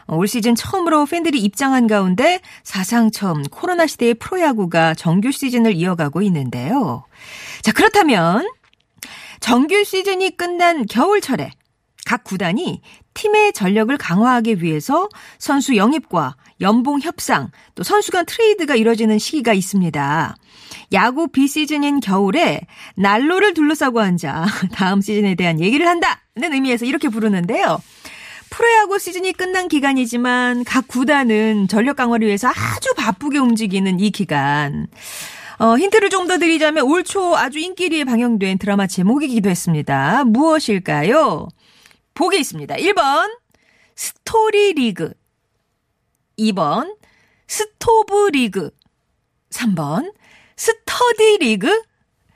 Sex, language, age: female, Korean, 40-59